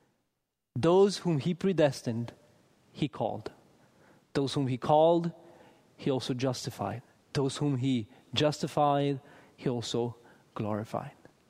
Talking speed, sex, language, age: 105 wpm, male, English, 30-49